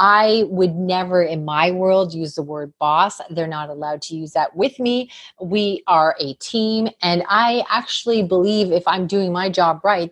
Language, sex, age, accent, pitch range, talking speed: English, female, 30-49, American, 165-215 Hz, 190 wpm